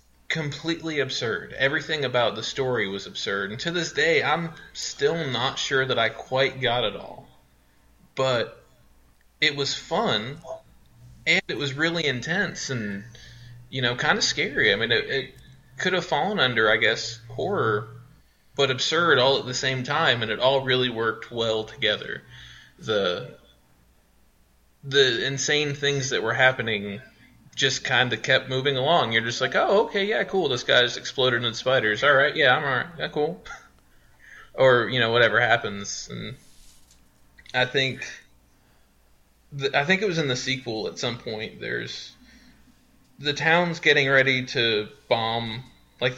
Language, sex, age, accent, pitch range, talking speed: English, male, 20-39, American, 110-140 Hz, 155 wpm